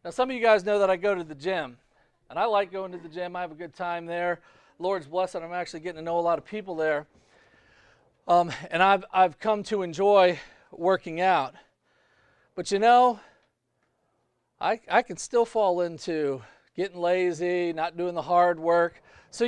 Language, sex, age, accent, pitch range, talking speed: English, male, 40-59, American, 180-250 Hz, 195 wpm